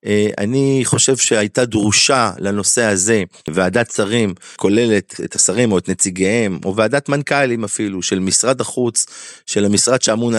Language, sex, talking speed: Hebrew, male, 140 wpm